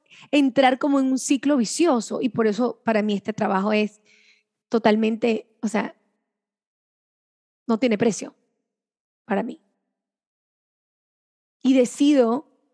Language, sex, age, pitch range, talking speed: English, female, 20-39, 225-275 Hz, 115 wpm